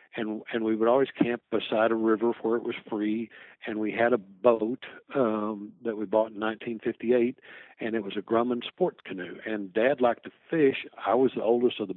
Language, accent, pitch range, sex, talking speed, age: English, American, 105-120 Hz, male, 210 wpm, 60-79